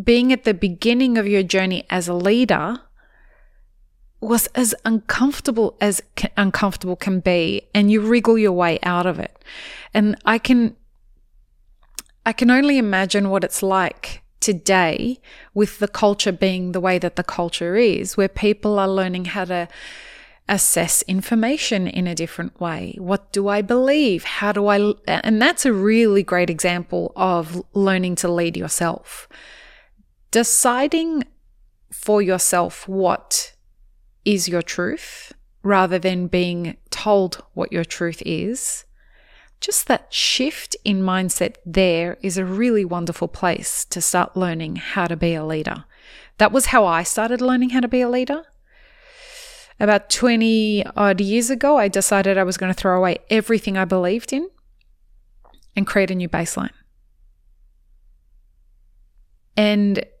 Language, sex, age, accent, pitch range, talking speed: English, female, 20-39, Australian, 180-230 Hz, 145 wpm